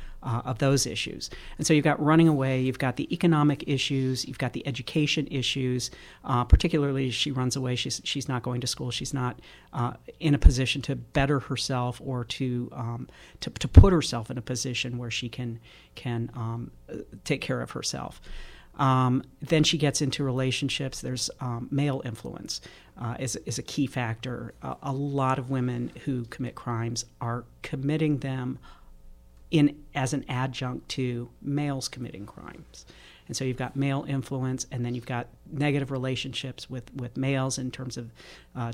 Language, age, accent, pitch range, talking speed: English, 40-59, American, 120-135 Hz, 175 wpm